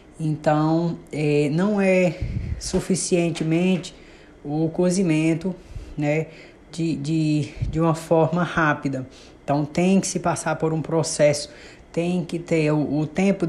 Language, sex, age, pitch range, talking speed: Portuguese, female, 20-39, 150-180 Hz, 115 wpm